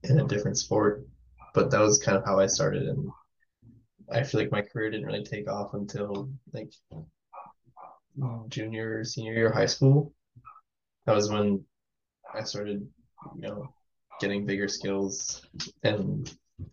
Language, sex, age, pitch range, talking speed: English, male, 10-29, 95-130 Hz, 145 wpm